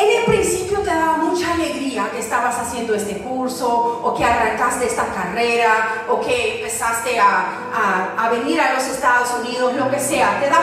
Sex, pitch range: female, 235-300 Hz